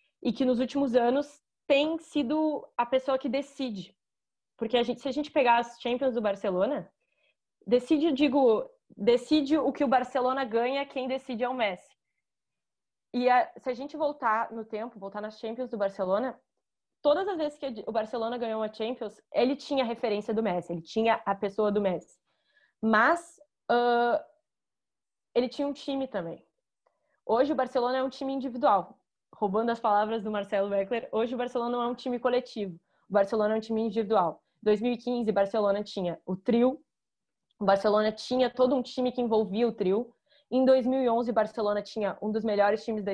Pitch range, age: 205-260 Hz, 20-39